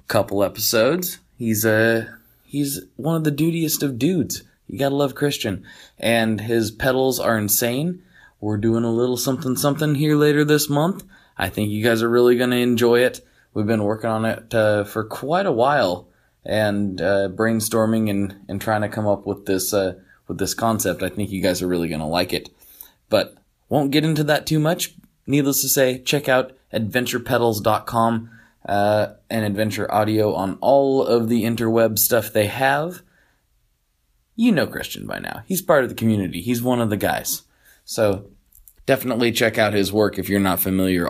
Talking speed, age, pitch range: 180 wpm, 20-39, 105-140 Hz